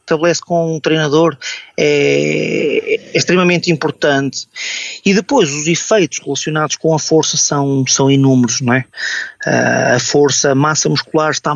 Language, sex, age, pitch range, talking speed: Portuguese, male, 20-39, 145-175 Hz, 135 wpm